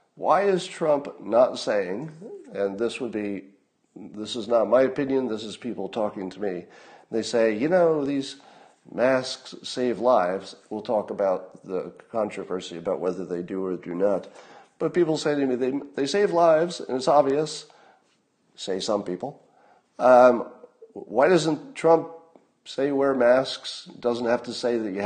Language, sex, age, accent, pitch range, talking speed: English, male, 50-69, American, 110-155 Hz, 160 wpm